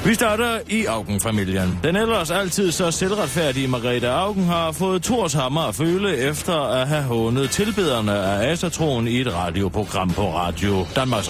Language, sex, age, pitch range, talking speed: Danish, male, 30-49, 115-185 Hz, 155 wpm